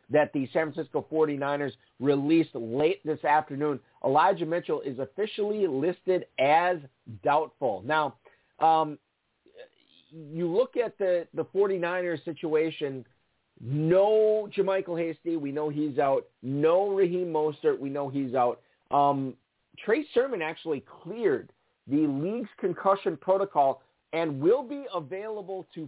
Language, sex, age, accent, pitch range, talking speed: English, male, 50-69, American, 135-185 Hz, 125 wpm